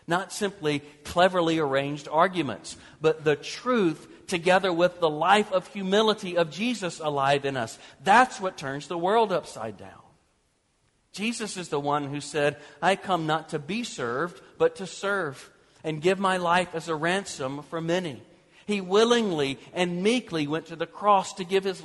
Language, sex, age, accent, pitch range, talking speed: English, male, 50-69, American, 150-195 Hz, 170 wpm